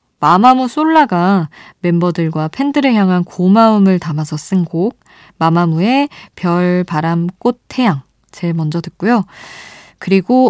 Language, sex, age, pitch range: Korean, female, 20-39, 160-205 Hz